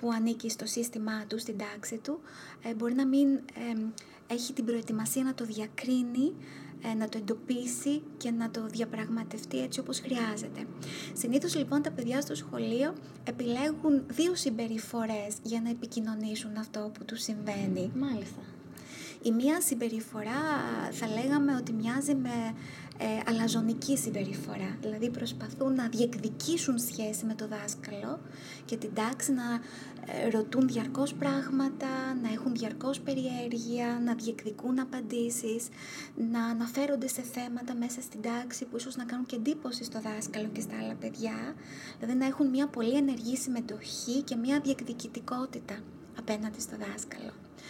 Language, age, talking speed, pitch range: Greek, 20-39, 135 wpm, 225-260 Hz